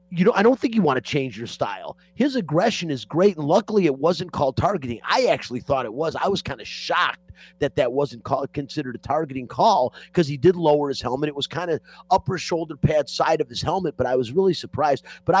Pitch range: 135-180 Hz